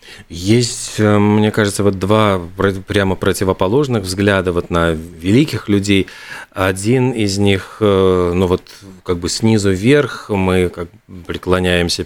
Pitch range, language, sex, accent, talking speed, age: 90-110 Hz, Russian, male, native, 105 wpm, 40-59